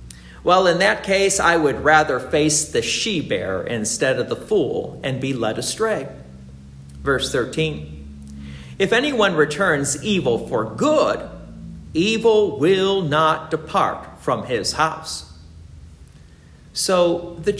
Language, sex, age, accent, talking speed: English, male, 50-69, American, 120 wpm